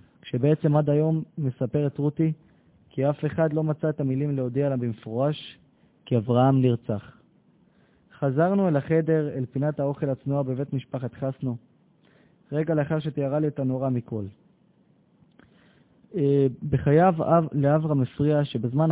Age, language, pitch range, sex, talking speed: 20-39, Hebrew, 130-160 Hz, male, 125 wpm